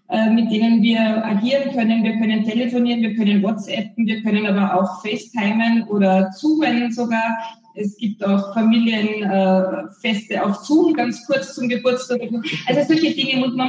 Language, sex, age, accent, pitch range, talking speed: German, female, 20-39, German, 200-240 Hz, 150 wpm